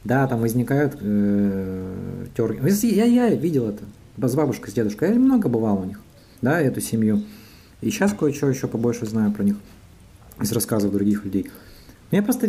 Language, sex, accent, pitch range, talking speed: Russian, male, native, 105-160 Hz, 170 wpm